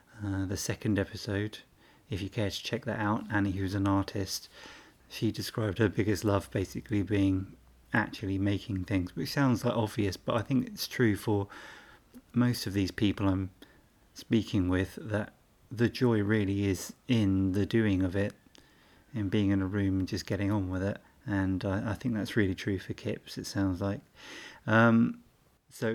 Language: English